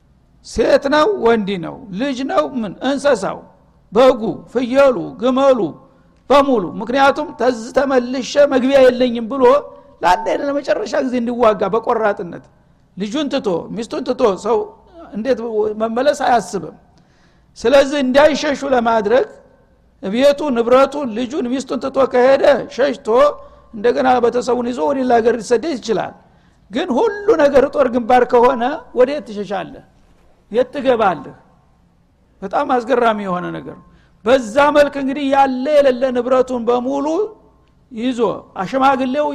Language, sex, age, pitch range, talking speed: Amharic, male, 60-79, 225-275 Hz, 90 wpm